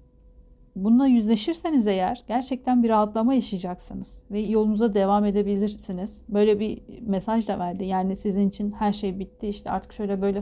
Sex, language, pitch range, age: female, Turkish, 190-230 Hz, 40-59